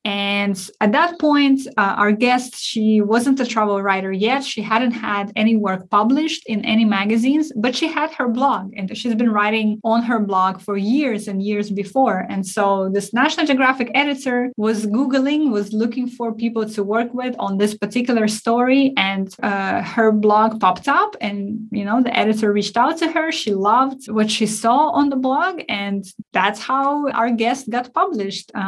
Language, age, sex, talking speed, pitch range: English, 20-39, female, 185 wpm, 200-245 Hz